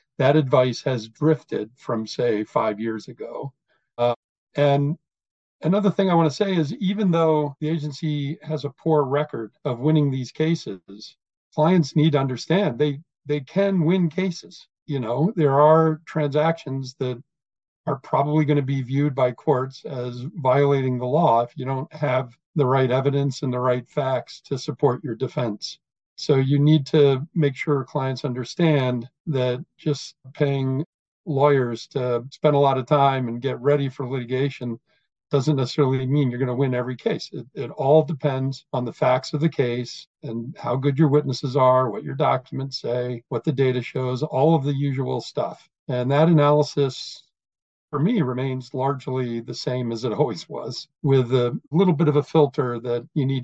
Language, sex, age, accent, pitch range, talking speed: English, male, 50-69, American, 130-155 Hz, 175 wpm